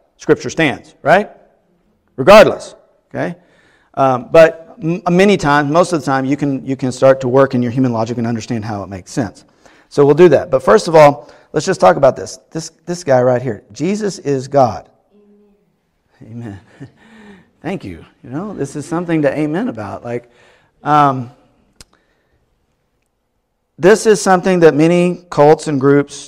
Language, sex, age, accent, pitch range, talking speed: English, male, 40-59, American, 120-160 Hz, 165 wpm